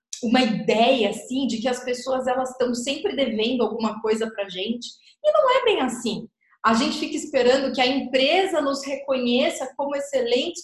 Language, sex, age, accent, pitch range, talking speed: Portuguese, female, 20-39, Brazilian, 235-310 Hz, 180 wpm